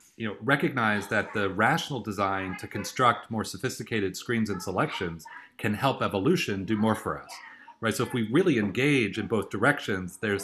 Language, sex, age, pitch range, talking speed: English, male, 40-59, 100-125 Hz, 180 wpm